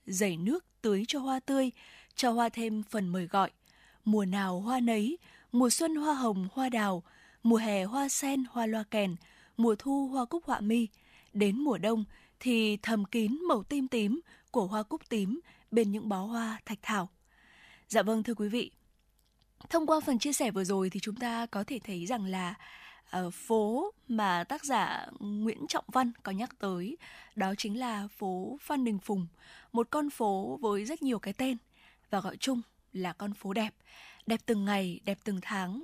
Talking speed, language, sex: 190 wpm, Vietnamese, female